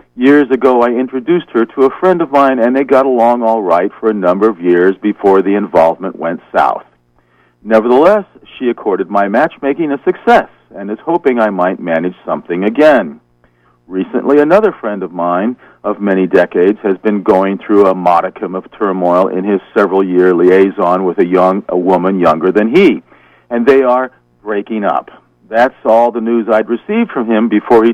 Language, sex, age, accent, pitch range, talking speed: English, male, 50-69, American, 95-130 Hz, 180 wpm